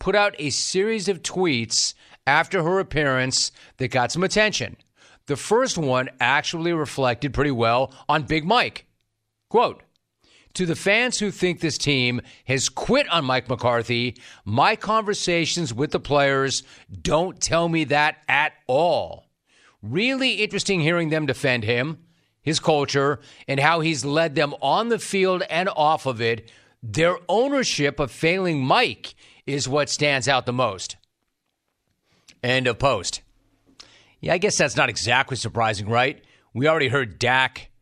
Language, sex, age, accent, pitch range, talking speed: English, male, 40-59, American, 120-165 Hz, 150 wpm